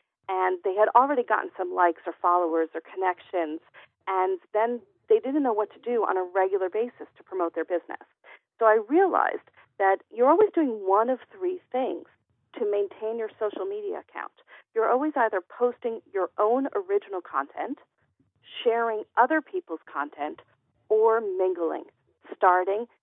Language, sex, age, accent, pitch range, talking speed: English, female, 40-59, American, 195-315 Hz, 155 wpm